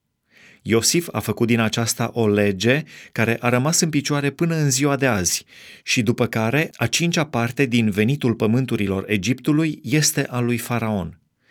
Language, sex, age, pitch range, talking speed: Romanian, male, 30-49, 105-135 Hz, 160 wpm